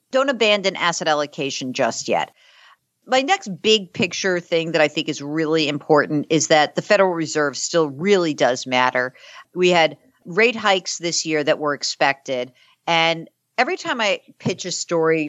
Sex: female